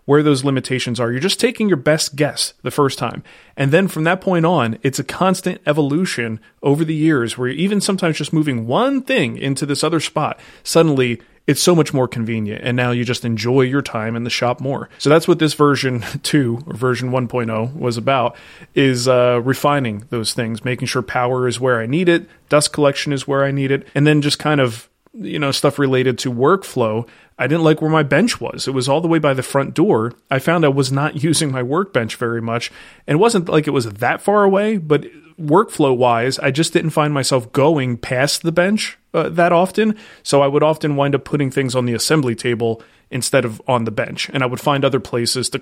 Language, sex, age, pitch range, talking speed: English, male, 30-49, 125-155 Hz, 225 wpm